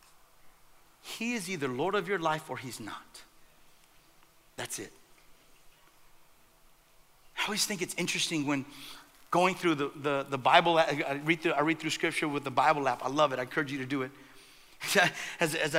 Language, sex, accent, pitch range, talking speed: English, male, American, 210-305 Hz, 175 wpm